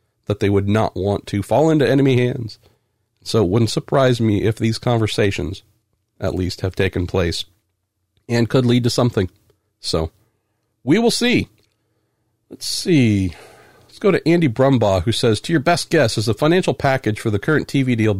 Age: 50-69